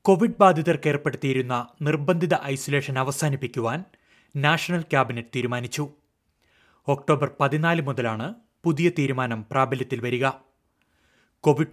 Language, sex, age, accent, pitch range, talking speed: Malayalam, male, 30-49, native, 125-155 Hz, 85 wpm